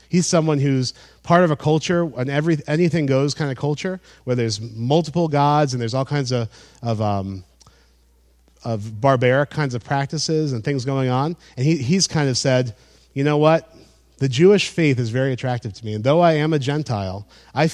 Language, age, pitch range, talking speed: English, 30-49, 110-155 Hz, 195 wpm